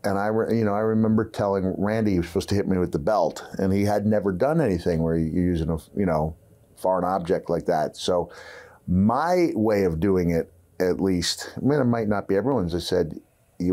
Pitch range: 90-110 Hz